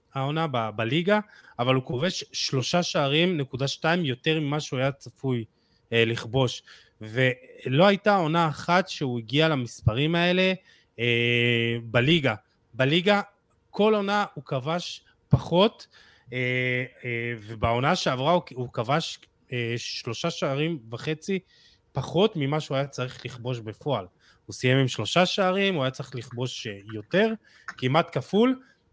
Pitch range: 125-175 Hz